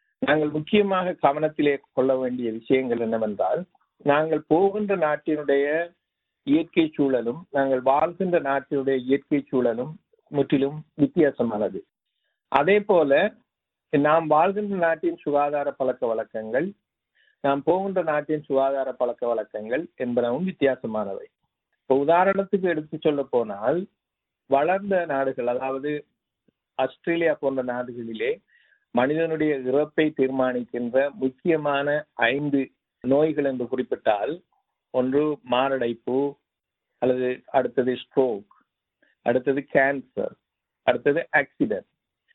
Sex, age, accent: male, 50-69, native